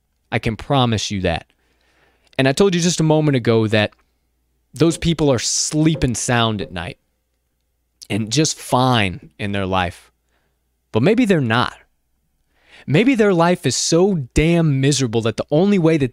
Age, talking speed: 20-39, 160 wpm